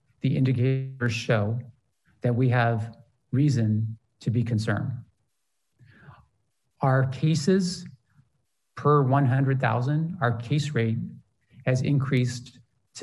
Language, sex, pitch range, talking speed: English, male, 120-140 Hz, 90 wpm